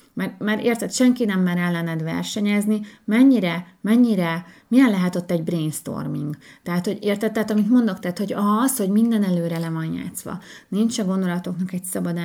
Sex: female